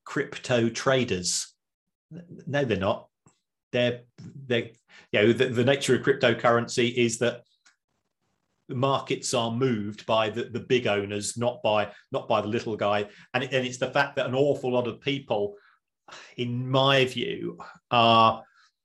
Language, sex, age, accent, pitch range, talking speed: English, male, 40-59, British, 115-130 Hz, 150 wpm